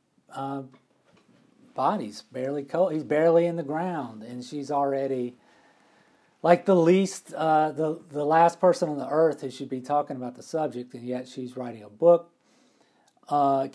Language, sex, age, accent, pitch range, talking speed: English, male, 40-59, American, 130-170 Hz, 160 wpm